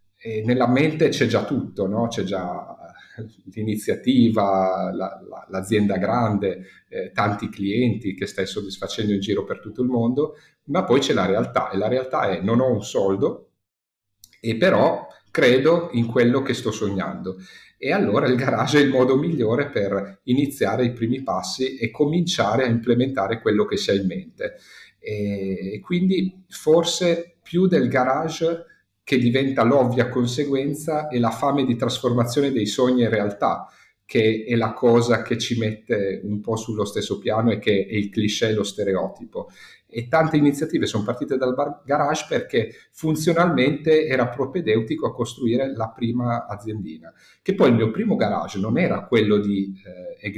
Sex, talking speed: male, 165 wpm